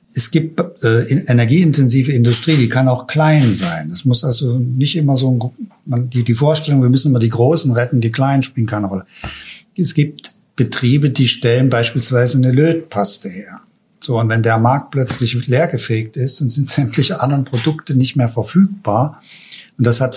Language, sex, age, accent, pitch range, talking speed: German, male, 60-79, German, 115-150 Hz, 175 wpm